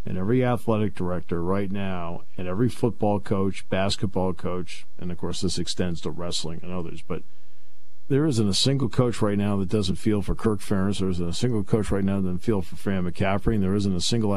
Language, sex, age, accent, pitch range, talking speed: English, male, 50-69, American, 90-115 Hz, 220 wpm